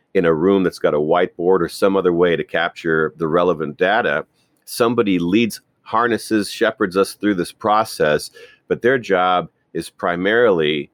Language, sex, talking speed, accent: English, male, 160 wpm, American